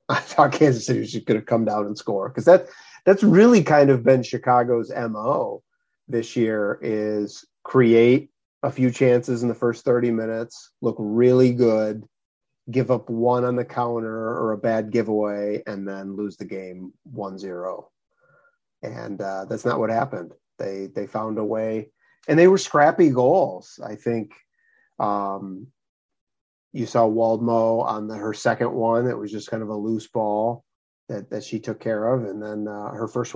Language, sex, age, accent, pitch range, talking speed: English, male, 30-49, American, 105-125 Hz, 175 wpm